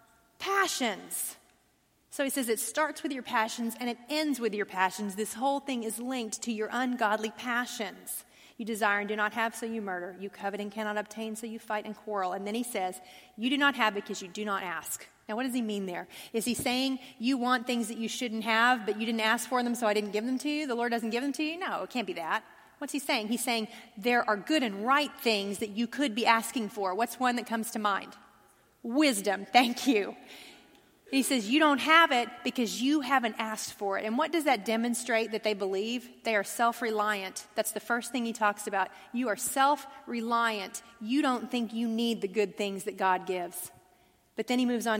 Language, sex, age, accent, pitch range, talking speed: English, female, 30-49, American, 210-250 Hz, 230 wpm